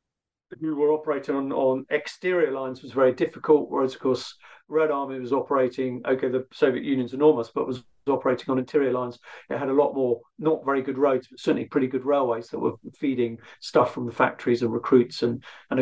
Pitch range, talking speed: 130-150 Hz, 200 wpm